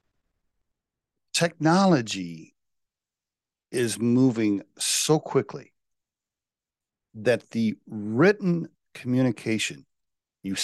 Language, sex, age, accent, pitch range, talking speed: English, male, 40-59, American, 100-125 Hz, 55 wpm